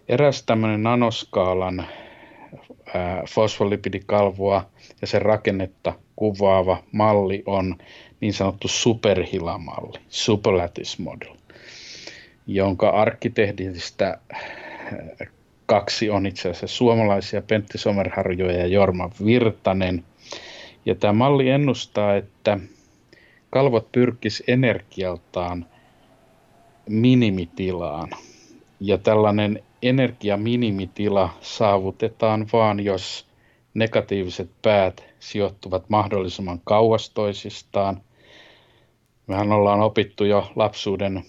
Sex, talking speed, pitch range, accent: male, 70 wpm, 95-110 Hz, native